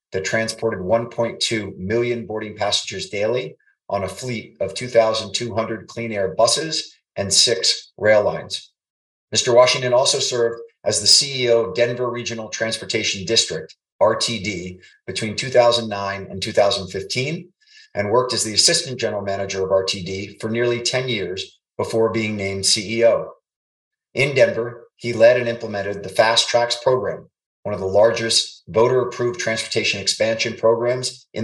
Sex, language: male, English